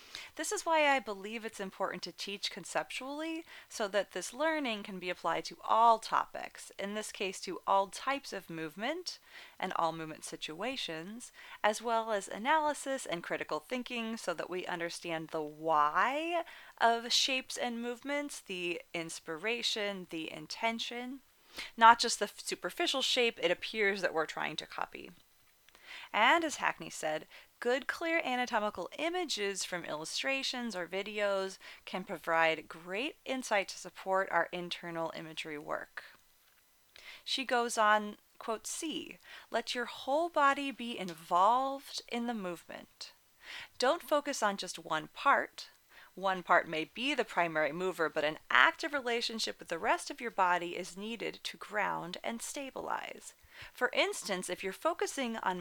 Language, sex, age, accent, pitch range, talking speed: English, female, 30-49, American, 180-270 Hz, 145 wpm